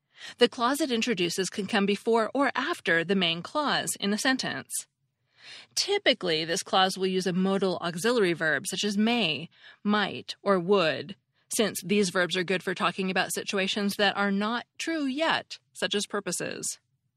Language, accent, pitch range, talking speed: English, American, 170-220 Hz, 165 wpm